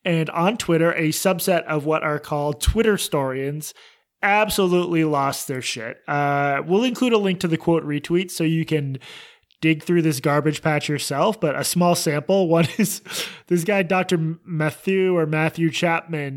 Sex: male